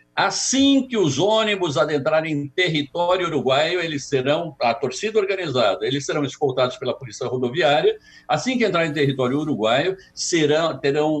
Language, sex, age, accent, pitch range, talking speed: Portuguese, male, 60-79, Brazilian, 130-180 Hz, 140 wpm